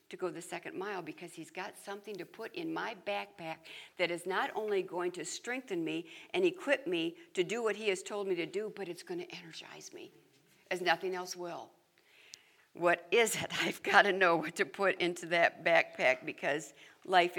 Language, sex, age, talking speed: English, female, 60-79, 205 wpm